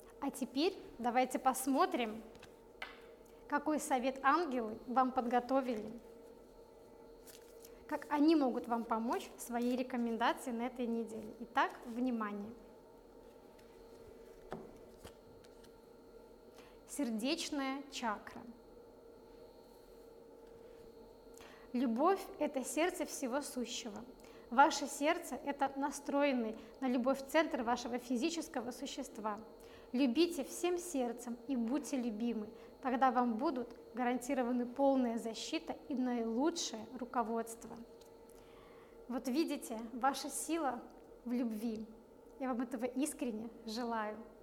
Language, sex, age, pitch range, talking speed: Russian, female, 20-39, 235-290 Hz, 90 wpm